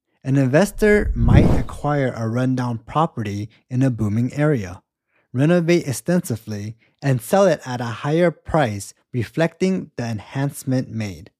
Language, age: English, 20-39